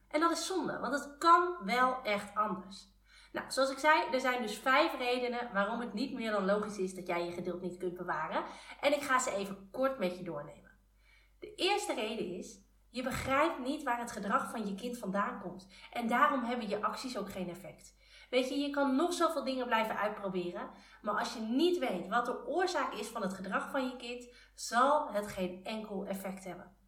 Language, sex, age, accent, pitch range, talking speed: Dutch, female, 30-49, Dutch, 195-265 Hz, 210 wpm